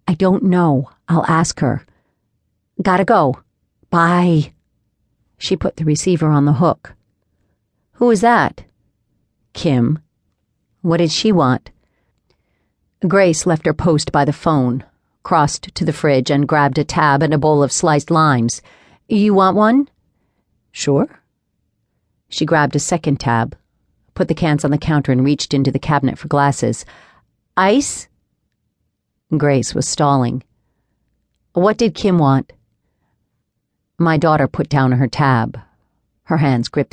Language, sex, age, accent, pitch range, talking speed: English, female, 50-69, American, 125-170 Hz, 135 wpm